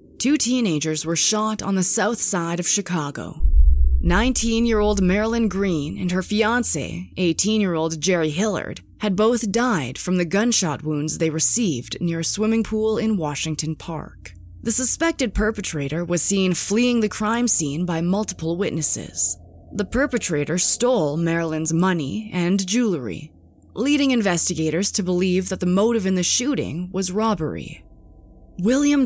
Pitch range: 160-215 Hz